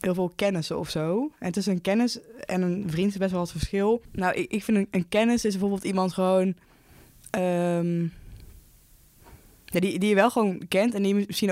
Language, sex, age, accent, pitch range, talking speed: Dutch, female, 20-39, Dutch, 170-185 Hz, 210 wpm